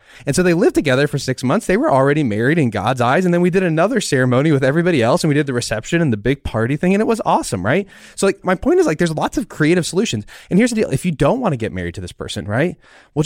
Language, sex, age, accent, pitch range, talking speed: English, male, 20-39, American, 115-170 Hz, 300 wpm